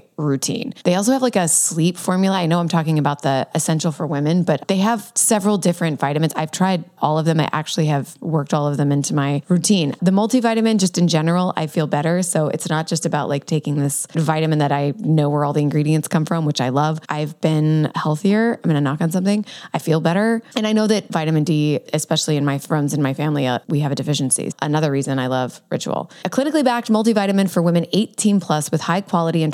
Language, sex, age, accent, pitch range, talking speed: English, female, 20-39, American, 150-195 Hz, 230 wpm